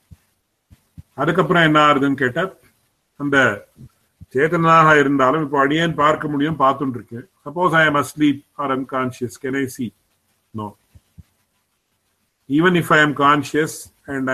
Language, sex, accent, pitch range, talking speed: English, male, Indian, 120-150 Hz, 65 wpm